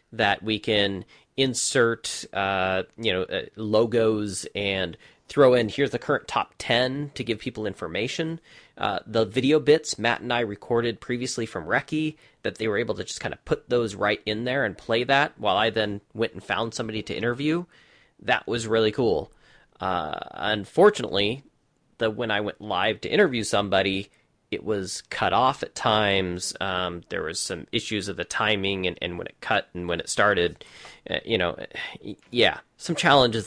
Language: English